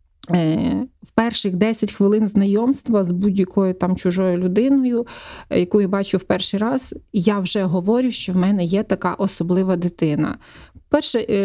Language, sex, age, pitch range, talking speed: Ukrainian, female, 30-49, 185-220 Hz, 140 wpm